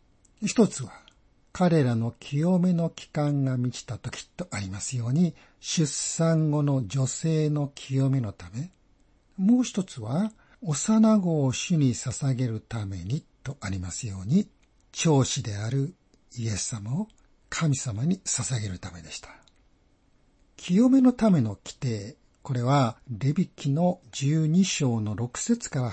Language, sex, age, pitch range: Japanese, male, 60-79, 120-165 Hz